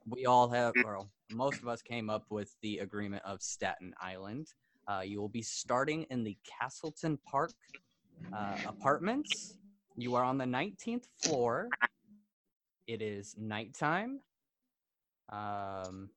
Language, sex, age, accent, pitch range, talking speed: English, male, 20-39, American, 105-130 Hz, 135 wpm